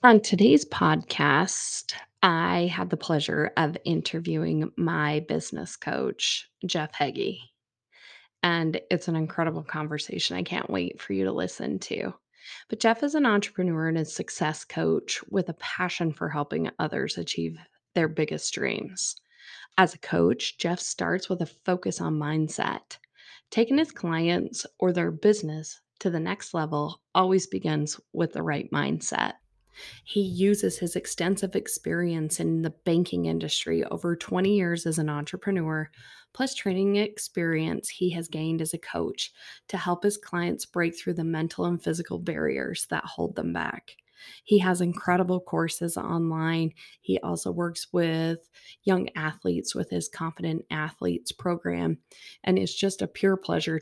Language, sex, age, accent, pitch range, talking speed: English, female, 20-39, American, 155-185 Hz, 150 wpm